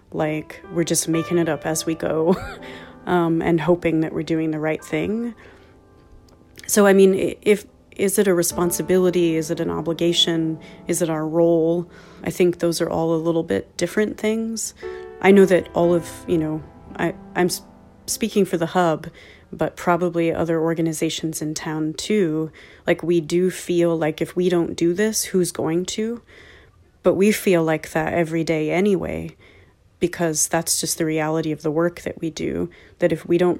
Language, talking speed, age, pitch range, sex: English, 180 wpm, 30-49, 160-180 Hz, female